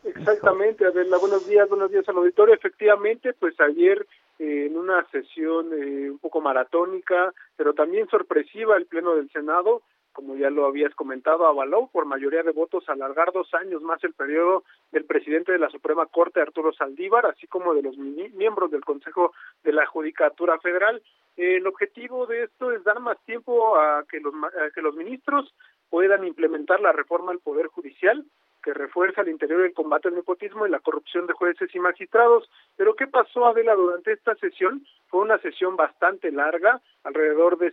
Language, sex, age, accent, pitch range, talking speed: Spanish, male, 40-59, Mexican, 160-225 Hz, 180 wpm